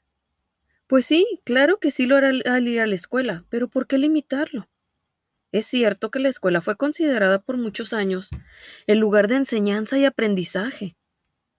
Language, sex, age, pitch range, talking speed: Spanish, female, 20-39, 195-260 Hz, 165 wpm